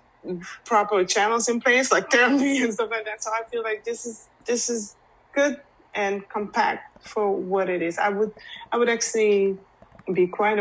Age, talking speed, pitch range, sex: 30-49, 180 wpm, 170-205 Hz, female